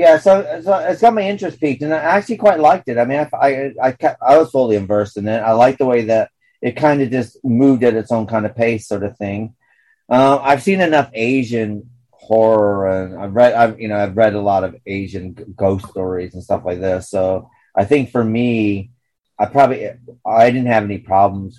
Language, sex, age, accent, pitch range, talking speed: English, male, 30-49, American, 95-120 Hz, 225 wpm